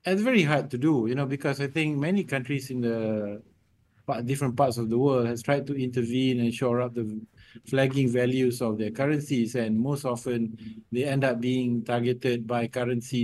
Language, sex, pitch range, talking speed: English, male, 115-135 Hz, 190 wpm